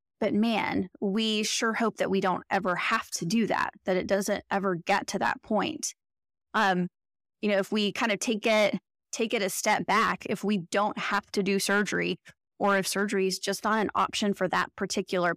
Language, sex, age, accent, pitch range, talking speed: English, female, 20-39, American, 185-220 Hz, 205 wpm